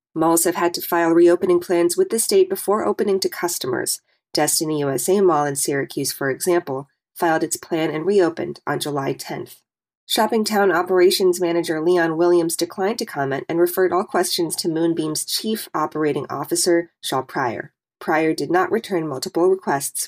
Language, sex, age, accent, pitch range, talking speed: English, female, 20-39, American, 160-195 Hz, 165 wpm